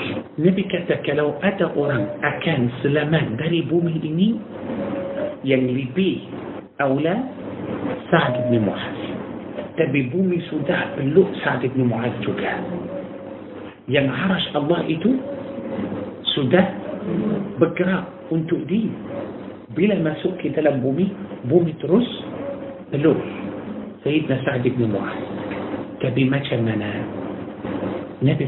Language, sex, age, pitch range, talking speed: Malay, male, 50-69, 130-180 Hz, 90 wpm